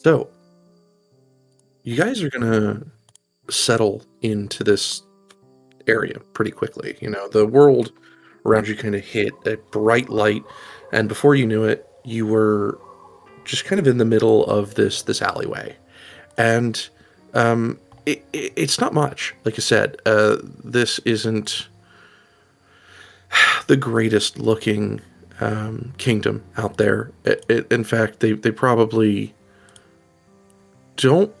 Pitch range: 105-130 Hz